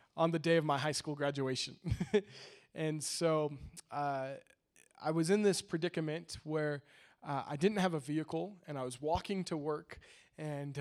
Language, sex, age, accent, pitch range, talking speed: English, male, 20-39, American, 145-175 Hz, 165 wpm